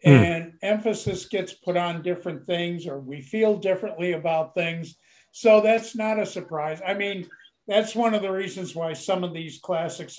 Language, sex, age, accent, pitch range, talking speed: English, male, 60-79, American, 175-230 Hz, 175 wpm